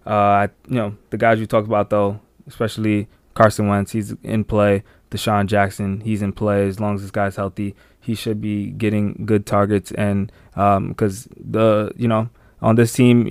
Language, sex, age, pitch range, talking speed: English, male, 20-39, 100-110 Hz, 185 wpm